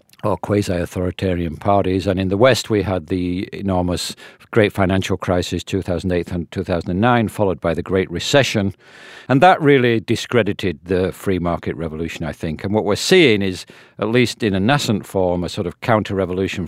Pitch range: 90-105 Hz